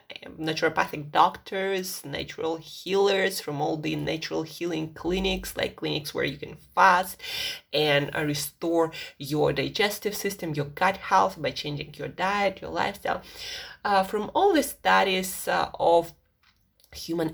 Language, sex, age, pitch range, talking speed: English, female, 20-39, 170-265 Hz, 130 wpm